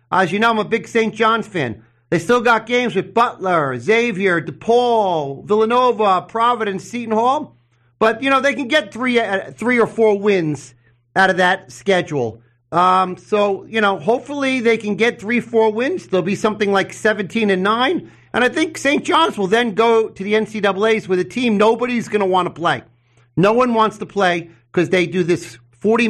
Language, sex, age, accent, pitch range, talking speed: English, male, 40-59, American, 155-220 Hz, 195 wpm